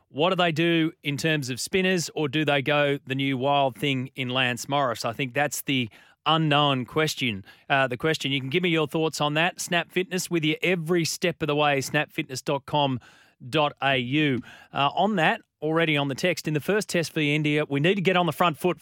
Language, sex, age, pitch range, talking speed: English, male, 30-49, 135-160 Hz, 210 wpm